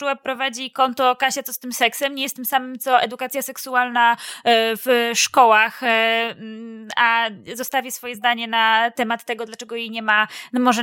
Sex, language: female, Polish